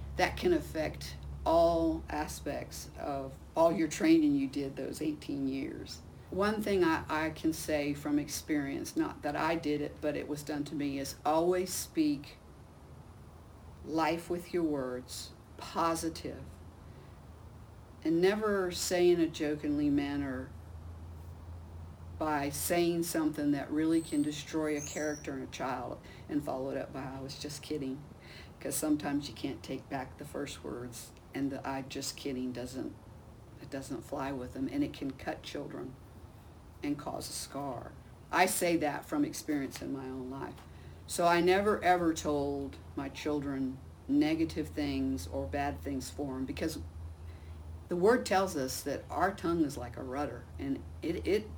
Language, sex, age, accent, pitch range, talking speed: English, female, 50-69, American, 100-160 Hz, 160 wpm